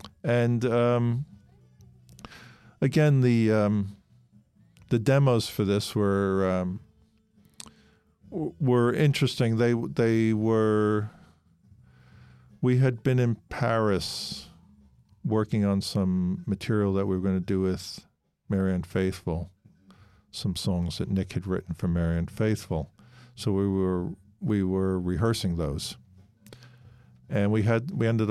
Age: 50-69